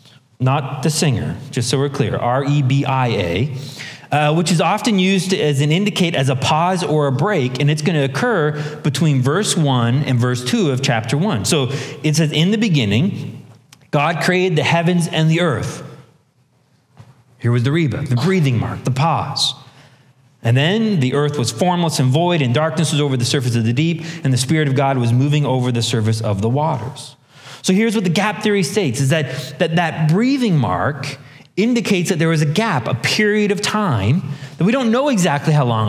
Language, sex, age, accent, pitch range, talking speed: English, male, 30-49, American, 130-185 Hz, 195 wpm